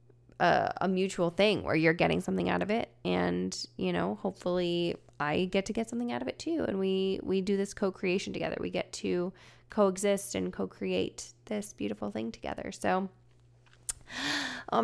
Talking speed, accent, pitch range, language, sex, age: 175 wpm, American, 170-215 Hz, English, female, 20-39